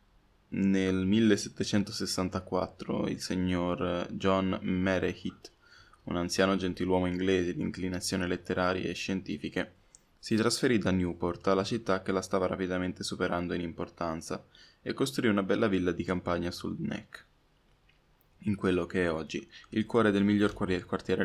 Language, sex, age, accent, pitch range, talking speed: Italian, male, 10-29, native, 90-100 Hz, 135 wpm